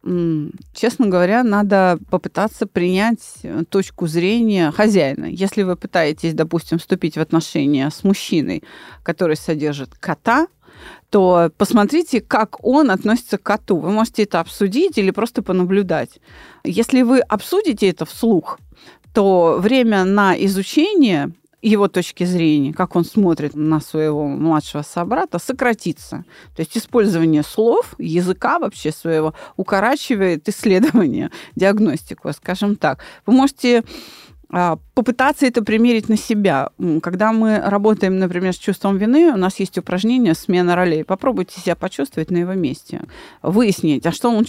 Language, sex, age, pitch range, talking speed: Russian, female, 30-49, 175-235 Hz, 130 wpm